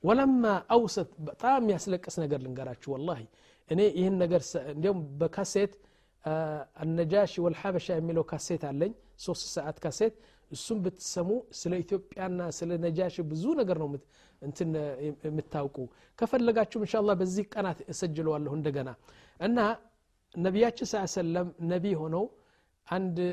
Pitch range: 165-205 Hz